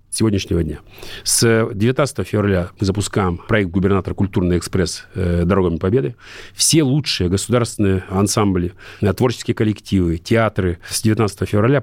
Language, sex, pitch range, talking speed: Russian, male, 90-110 Hz, 115 wpm